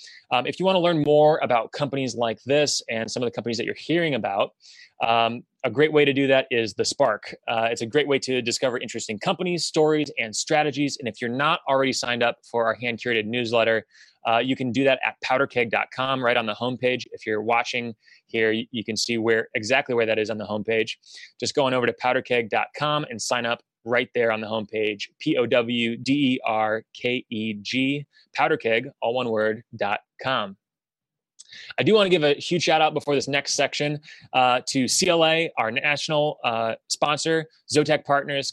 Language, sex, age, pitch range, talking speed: English, male, 20-39, 115-145 Hz, 195 wpm